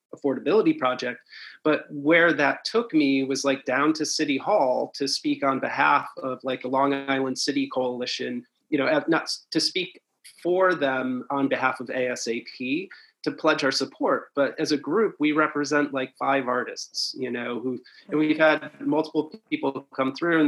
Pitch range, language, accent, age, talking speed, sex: 135-155 Hz, English, American, 30-49, 175 wpm, male